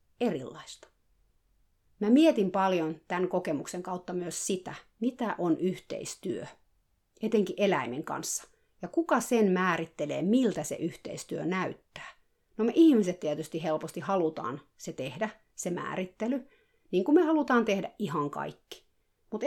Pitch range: 165-220 Hz